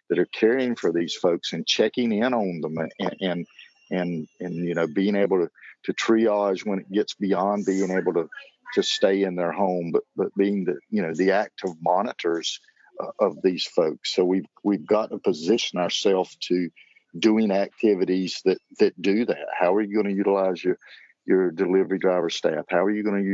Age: 50-69